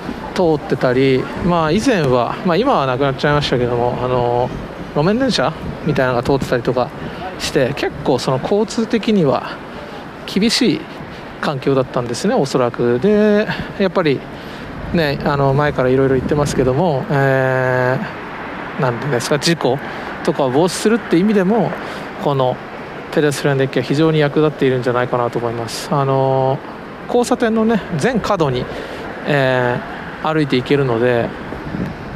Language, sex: Japanese, male